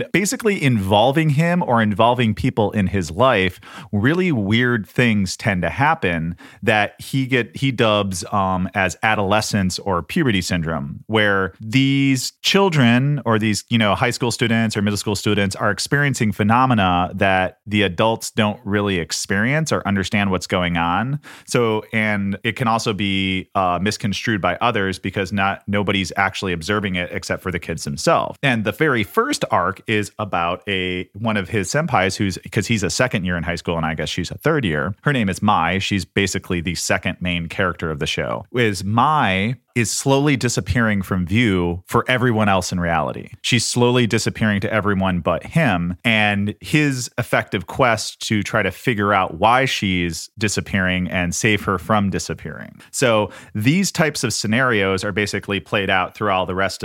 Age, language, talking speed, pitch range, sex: 30-49, English, 175 wpm, 95-115 Hz, male